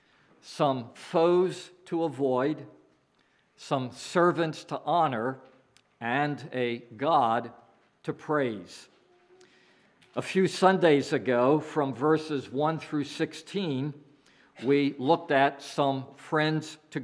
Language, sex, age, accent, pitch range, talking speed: English, male, 50-69, American, 130-155 Hz, 100 wpm